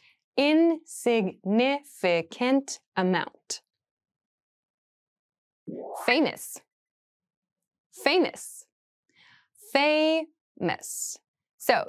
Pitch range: 185-290 Hz